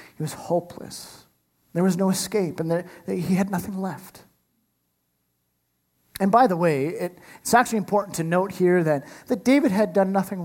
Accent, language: American, English